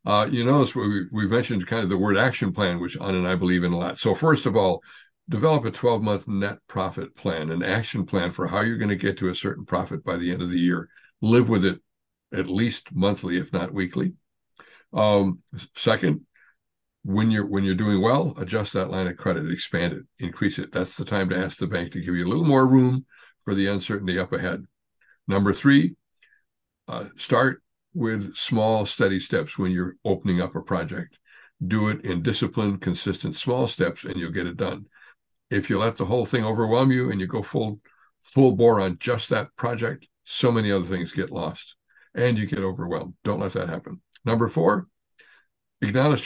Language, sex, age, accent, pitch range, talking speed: English, male, 60-79, American, 95-120 Hz, 200 wpm